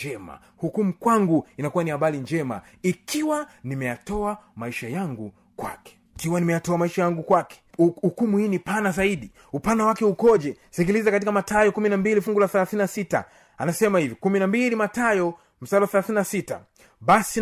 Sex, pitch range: male, 180-240 Hz